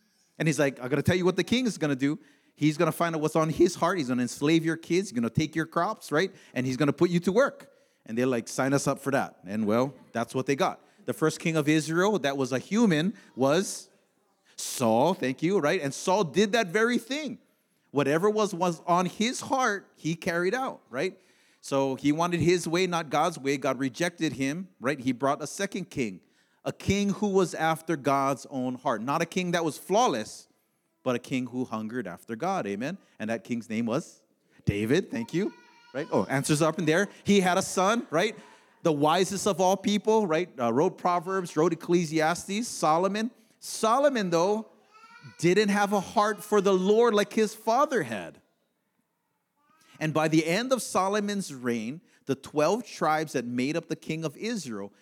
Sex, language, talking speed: male, English, 205 wpm